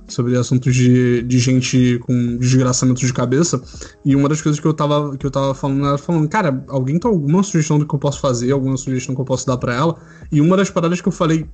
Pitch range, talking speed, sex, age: 135-165 Hz, 250 wpm, male, 10-29